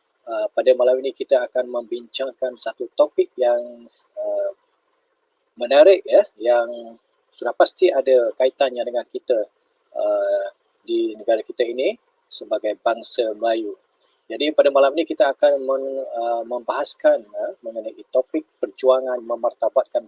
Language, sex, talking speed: Malay, male, 125 wpm